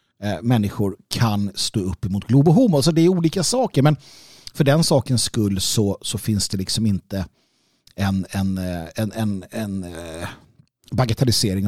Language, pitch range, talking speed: Swedish, 100-140 Hz, 145 wpm